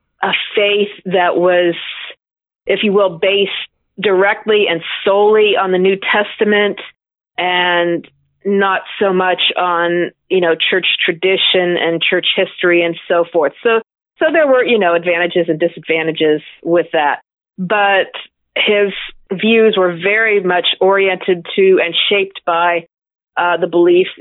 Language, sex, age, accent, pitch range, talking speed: English, female, 40-59, American, 175-205 Hz, 135 wpm